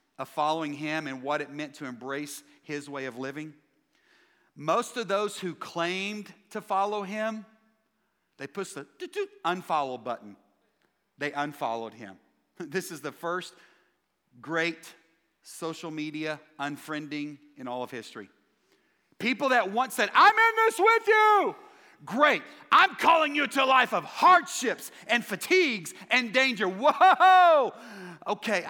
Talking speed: 135 wpm